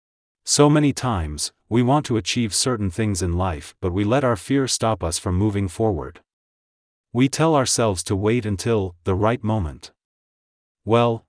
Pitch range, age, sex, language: 90-120 Hz, 40-59, male, English